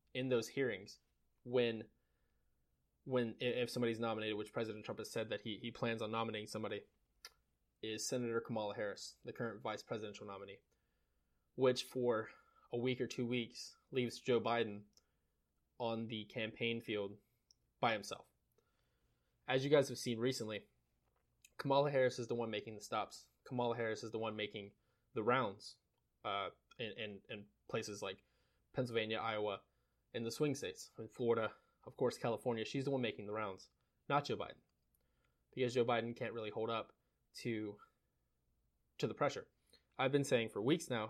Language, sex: English, male